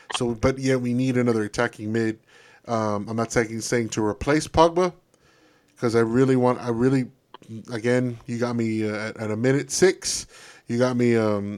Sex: male